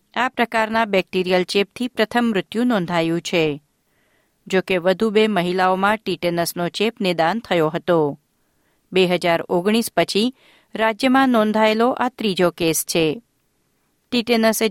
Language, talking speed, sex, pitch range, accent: Gujarati, 105 wpm, female, 175-220 Hz, native